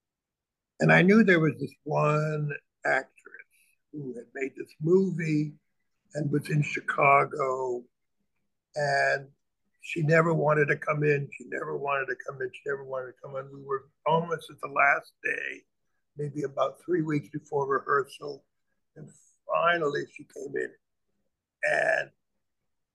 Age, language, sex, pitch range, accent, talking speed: 60-79, English, male, 140-215 Hz, American, 145 wpm